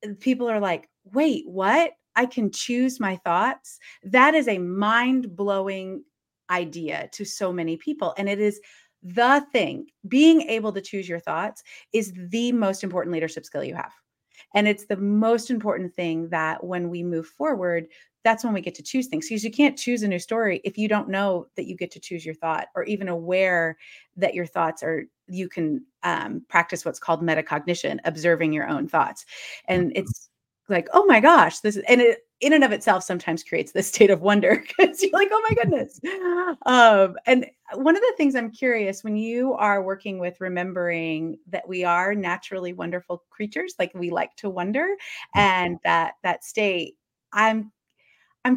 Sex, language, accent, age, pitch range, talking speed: female, English, American, 30-49, 175-245 Hz, 185 wpm